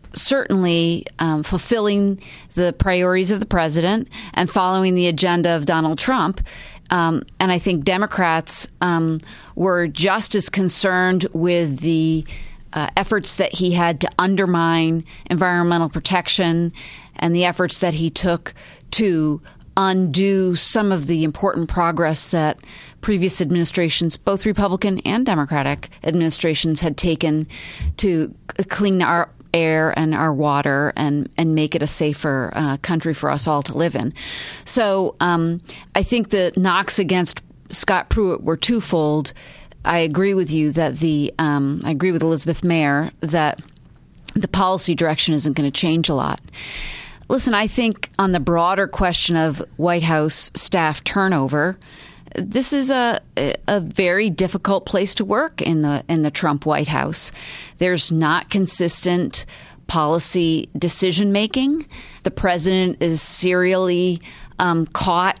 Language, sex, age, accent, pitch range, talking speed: English, female, 30-49, American, 160-190 Hz, 140 wpm